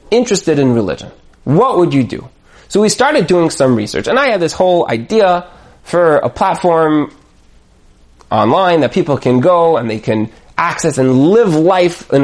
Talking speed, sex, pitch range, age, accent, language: 170 wpm, male, 120-170 Hz, 30-49, American, English